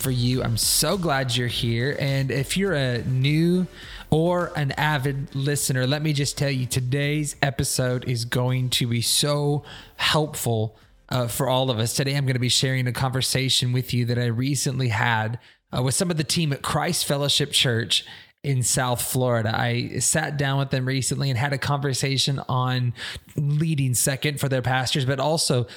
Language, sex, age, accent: English, male, 20-39, American